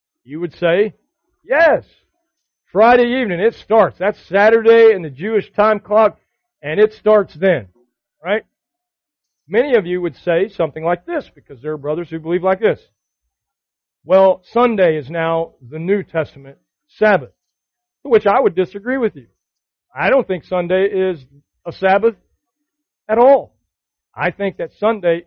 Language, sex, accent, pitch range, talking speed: English, male, American, 150-215 Hz, 150 wpm